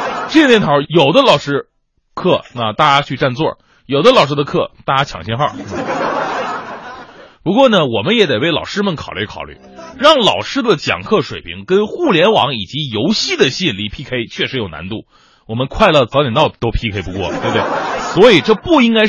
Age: 30-49